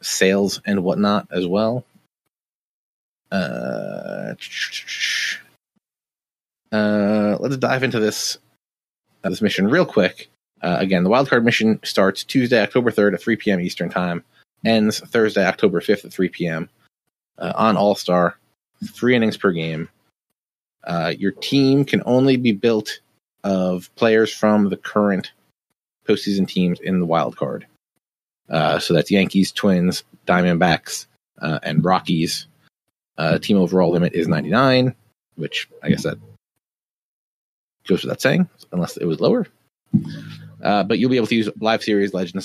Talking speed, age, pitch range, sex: 140 wpm, 30-49, 95-115 Hz, male